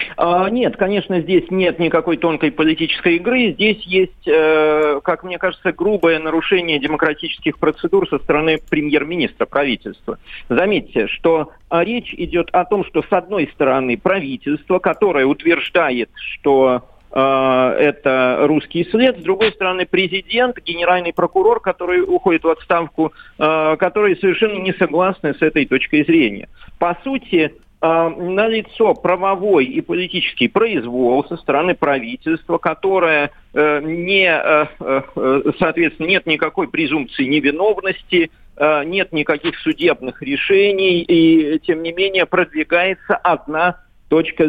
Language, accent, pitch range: Russian, native, 155-195 Hz